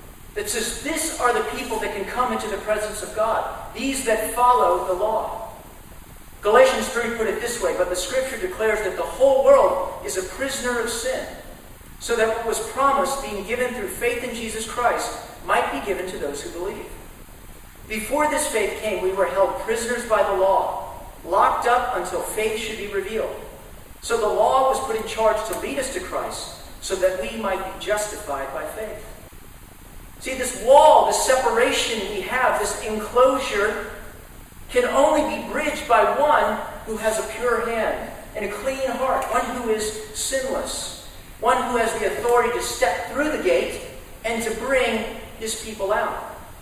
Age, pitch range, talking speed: 40-59, 210-250 Hz, 180 wpm